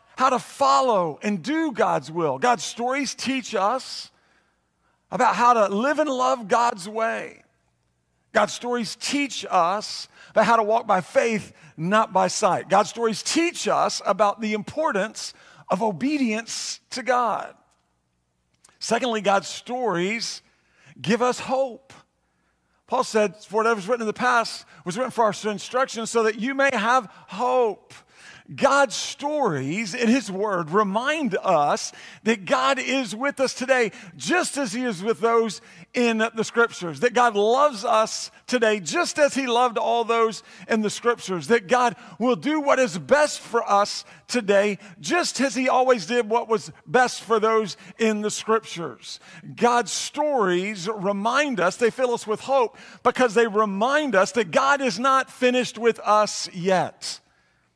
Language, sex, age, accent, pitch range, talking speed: English, male, 50-69, American, 205-255 Hz, 155 wpm